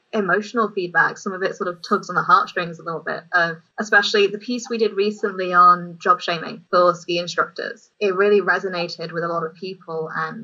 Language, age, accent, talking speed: English, 20-39, British, 205 wpm